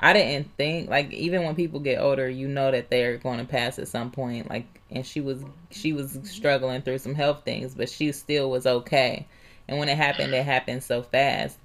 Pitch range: 125-140 Hz